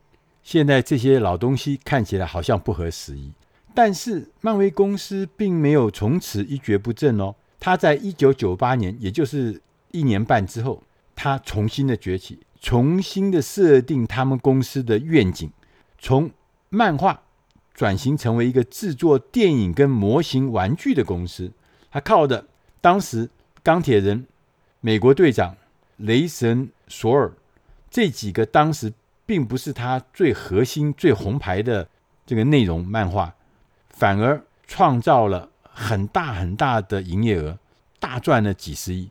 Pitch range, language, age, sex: 100-145 Hz, Chinese, 50-69, male